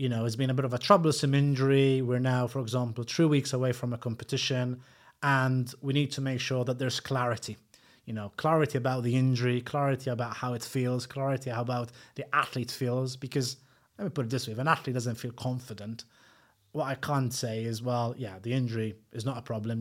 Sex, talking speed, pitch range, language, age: male, 215 wpm, 120-140 Hz, English, 30-49